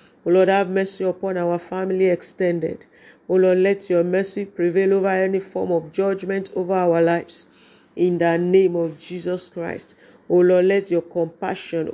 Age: 40-59